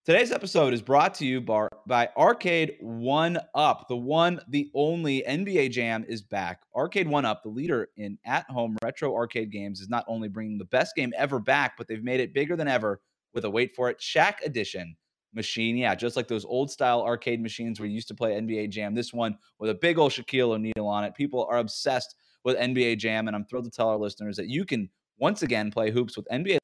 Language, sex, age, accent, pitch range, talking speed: English, male, 20-39, American, 110-140 Hz, 220 wpm